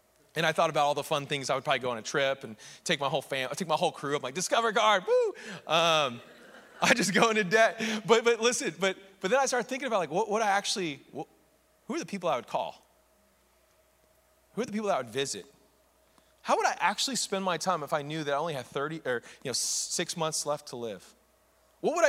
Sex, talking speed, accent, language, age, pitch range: male, 245 wpm, American, English, 30-49, 150-245 Hz